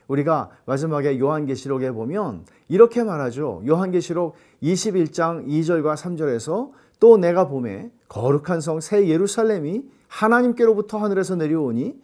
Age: 40-59